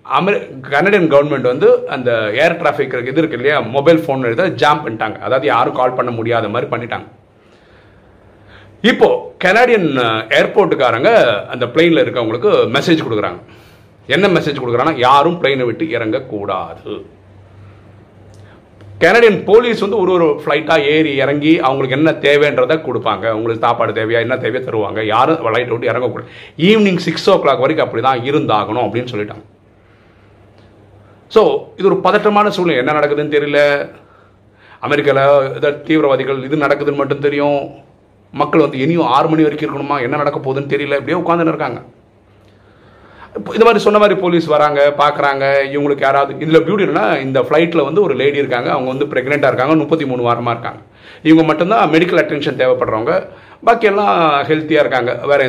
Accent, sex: native, male